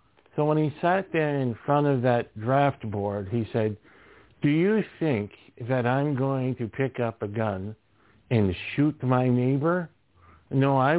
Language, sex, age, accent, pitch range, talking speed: English, male, 50-69, American, 110-140 Hz, 165 wpm